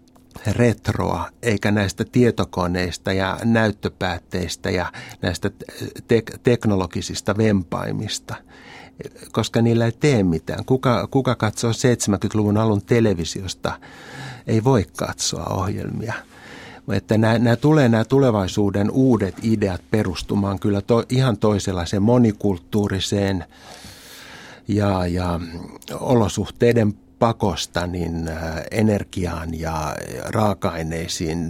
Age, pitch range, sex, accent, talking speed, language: 60-79, 95-115 Hz, male, native, 80 wpm, Finnish